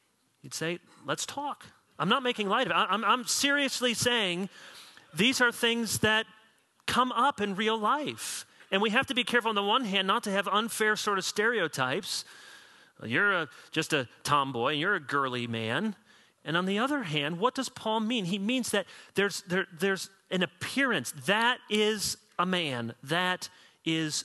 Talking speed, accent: 185 wpm, American